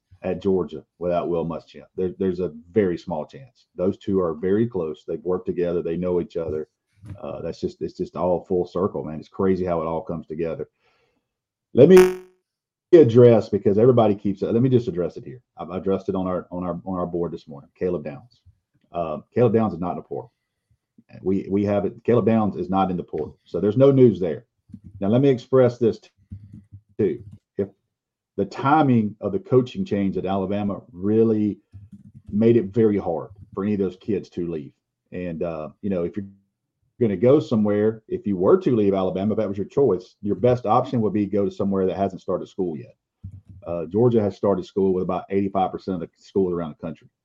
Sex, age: male, 40-59